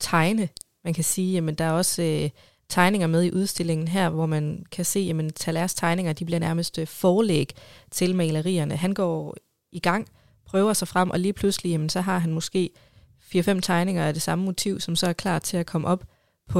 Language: Danish